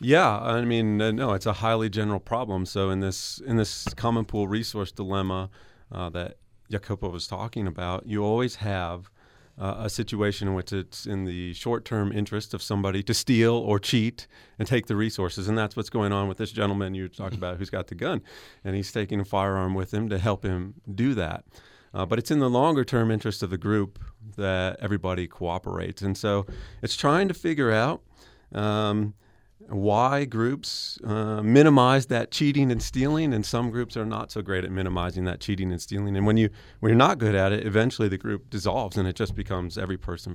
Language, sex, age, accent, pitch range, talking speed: English, male, 30-49, American, 95-110 Hz, 200 wpm